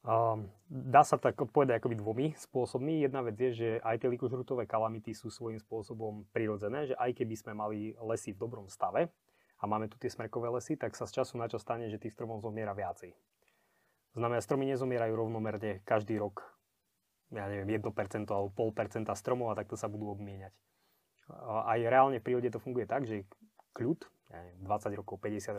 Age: 20-39